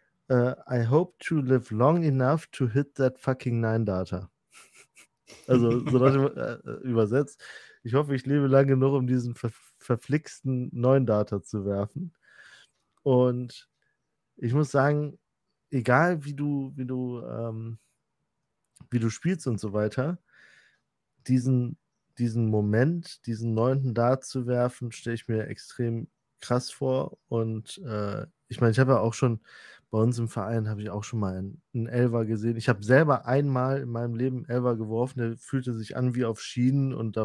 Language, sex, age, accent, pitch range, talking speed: German, male, 20-39, German, 115-135 Hz, 165 wpm